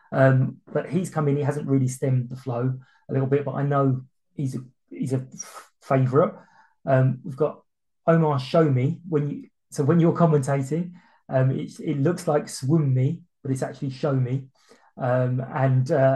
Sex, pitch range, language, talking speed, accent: male, 130-150 Hz, English, 175 wpm, British